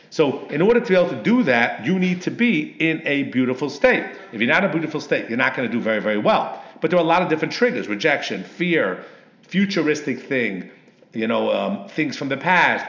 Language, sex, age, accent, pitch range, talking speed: English, male, 50-69, American, 140-185 Hz, 240 wpm